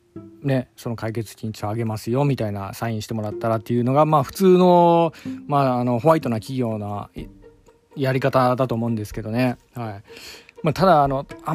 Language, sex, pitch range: Japanese, male, 115-155 Hz